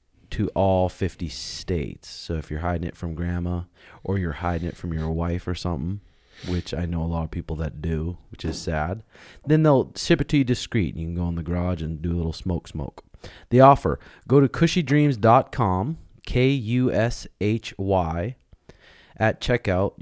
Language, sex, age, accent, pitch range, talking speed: English, male, 30-49, American, 85-115 Hz, 175 wpm